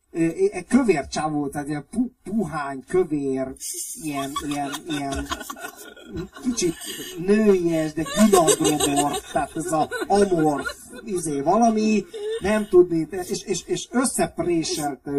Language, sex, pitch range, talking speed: Hungarian, male, 140-225 Hz, 100 wpm